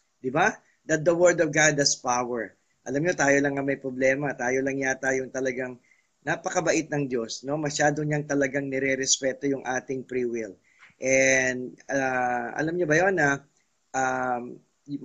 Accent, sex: Filipino, male